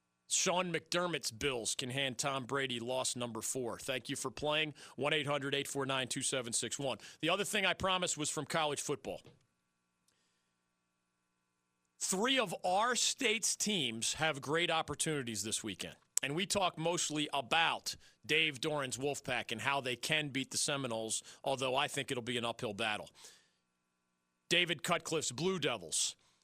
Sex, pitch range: male, 125-180 Hz